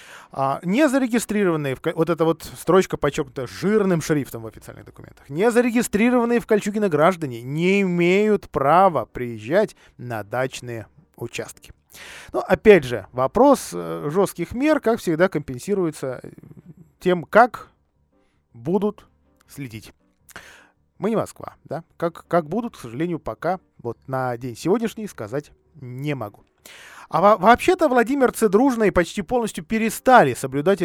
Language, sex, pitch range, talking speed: Russian, male, 130-210 Hz, 120 wpm